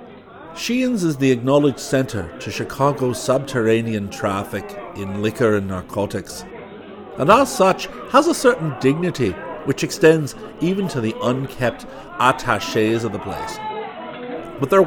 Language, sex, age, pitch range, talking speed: English, male, 50-69, 105-145 Hz, 130 wpm